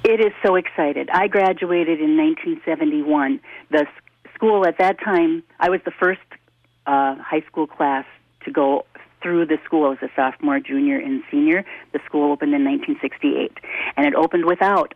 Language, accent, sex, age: English, American, female, 40-59